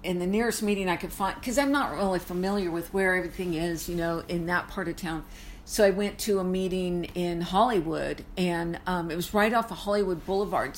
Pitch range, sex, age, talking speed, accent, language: 185-235 Hz, female, 50-69, 230 wpm, American, English